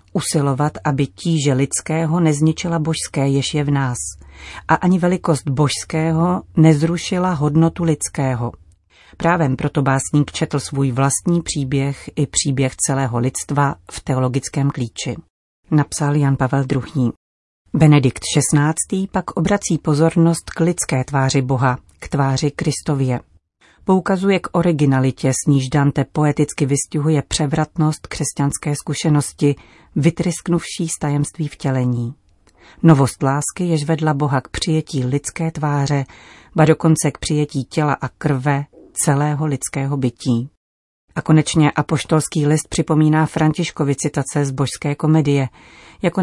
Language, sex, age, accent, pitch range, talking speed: Czech, female, 40-59, native, 135-160 Hz, 120 wpm